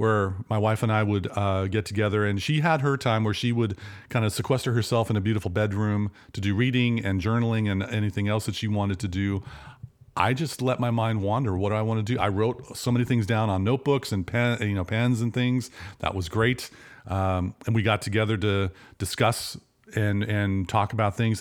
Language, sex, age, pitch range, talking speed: English, male, 40-59, 100-120 Hz, 225 wpm